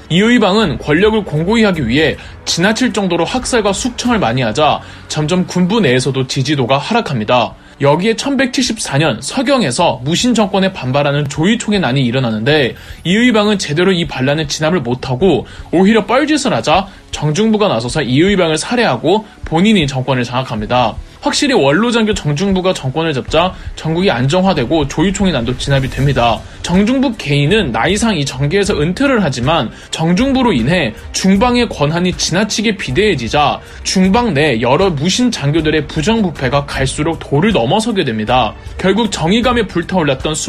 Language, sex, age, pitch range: Korean, male, 20-39, 145-220 Hz